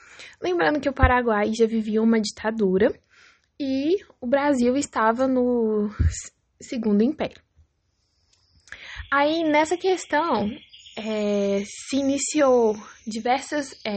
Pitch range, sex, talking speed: 215-280 Hz, female, 90 wpm